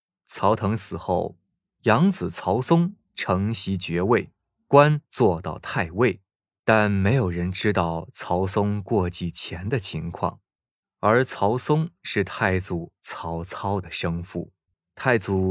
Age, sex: 20-39, male